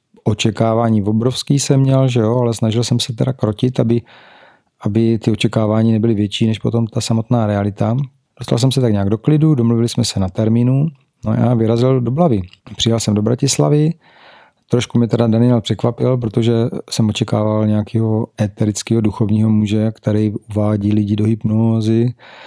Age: 40-59